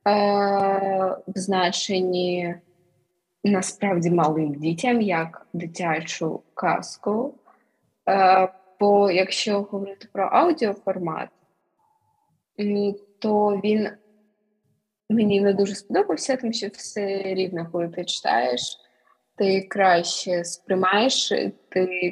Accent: native